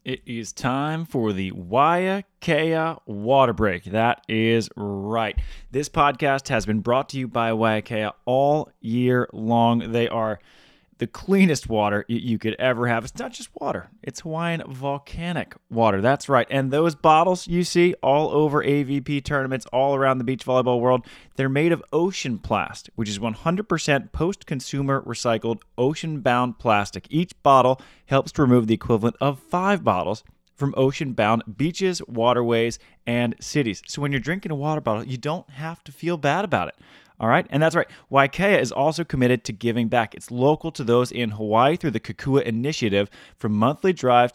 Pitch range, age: 115-150 Hz, 20-39